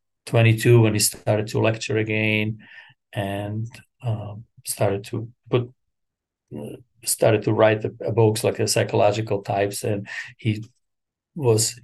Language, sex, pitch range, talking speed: English, male, 110-135 Hz, 125 wpm